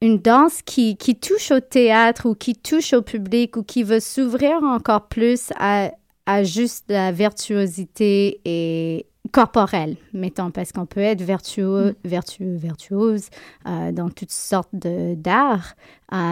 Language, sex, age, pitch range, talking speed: French, female, 30-49, 190-230 Hz, 155 wpm